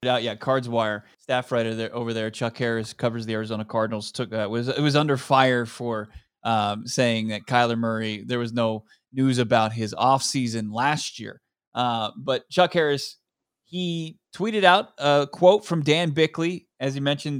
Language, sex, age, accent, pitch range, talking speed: English, male, 20-39, American, 120-150 Hz, 175 wpm